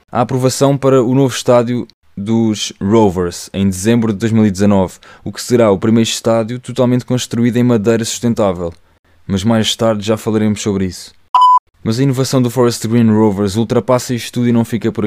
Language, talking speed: Portuguese, 175 wpm